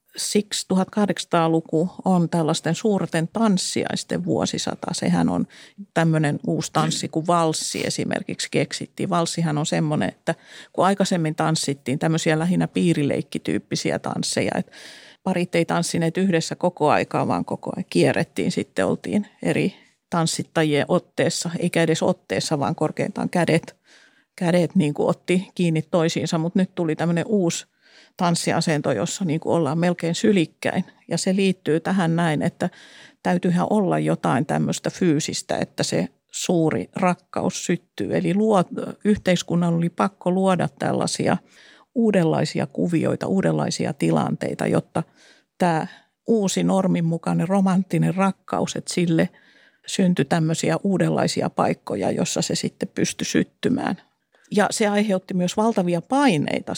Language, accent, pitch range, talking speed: Finnish, native, 165-190 Hz, 120 wpm